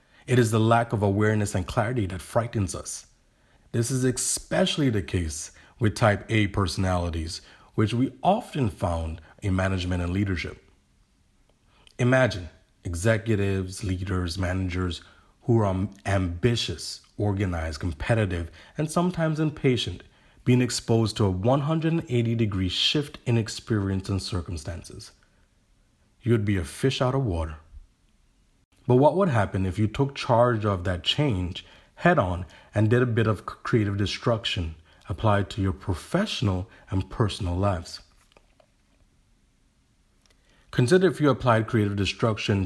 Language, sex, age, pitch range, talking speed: English, male, 30-49, 90-120 Hz, 125 wpm